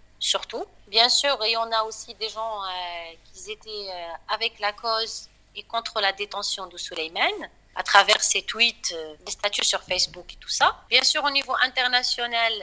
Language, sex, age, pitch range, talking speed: French, female, 30-49, 200-255 Hz, 185 wpm